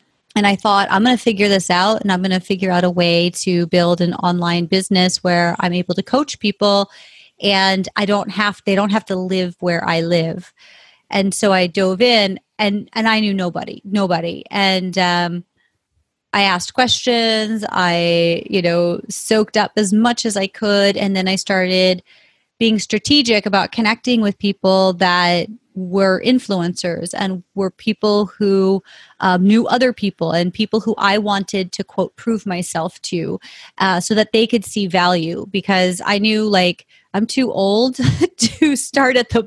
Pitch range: 180-215 Hz